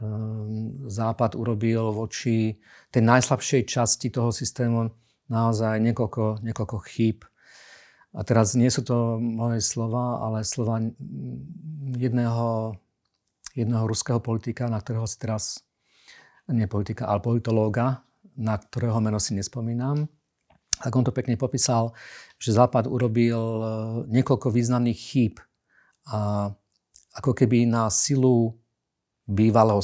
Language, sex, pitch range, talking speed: Slovak, male, 100-120 Hz, 110 wpm